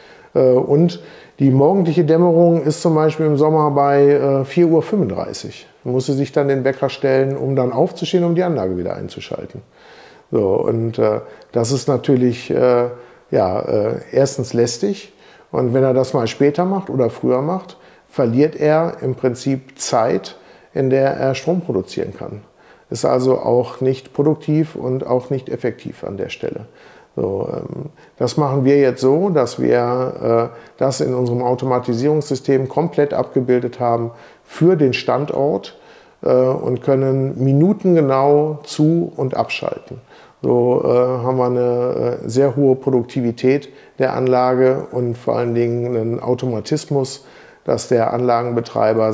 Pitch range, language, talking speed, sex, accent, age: 125-150 Hz, English, 135 wpm, male, German, 50-69